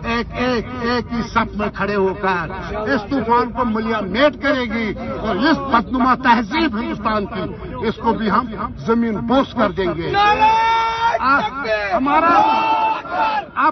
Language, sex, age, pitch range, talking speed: Urdu, male, 60-79, 225-300 Hz, 130 wpm